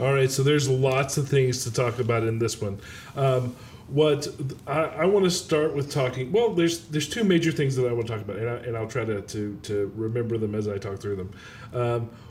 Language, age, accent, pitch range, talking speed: English, 40-59, American, 110-140 Hz, 245 wpm